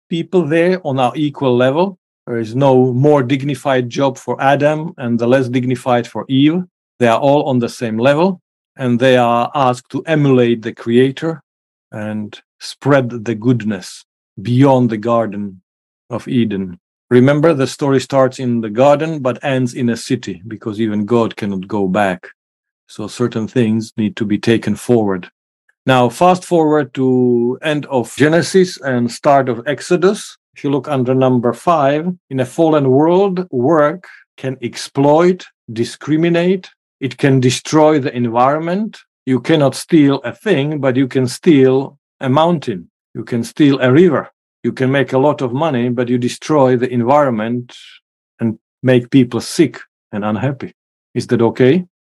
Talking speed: 160 wpm